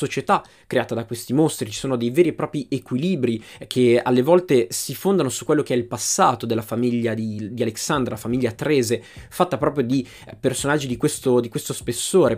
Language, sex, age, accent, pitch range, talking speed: Italian, male, 20-39, native, 120-145 Hz, 185 wpm